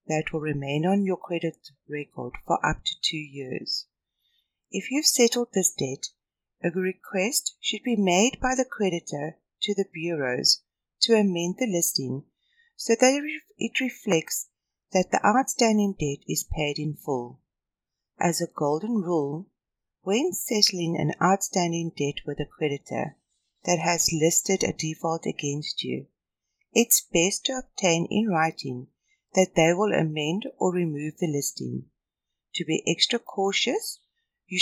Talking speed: 140 wpm